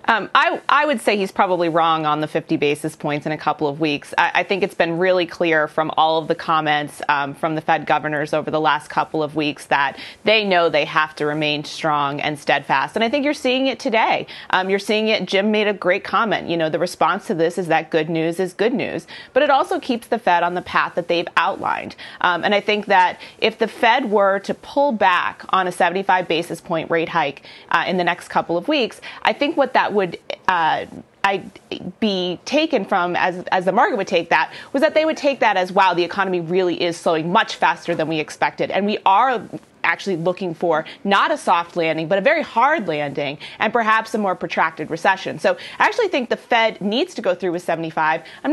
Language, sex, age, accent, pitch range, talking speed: English, female, 30-49, American, 165-225 Hz, 230 wpm